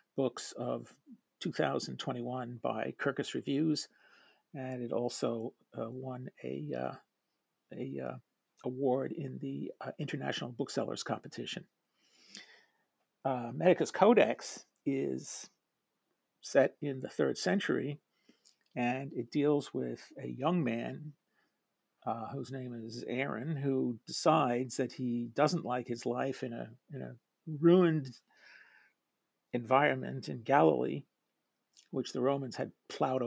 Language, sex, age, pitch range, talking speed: English, male, 50-69, 115-135 Hz, 115 wpm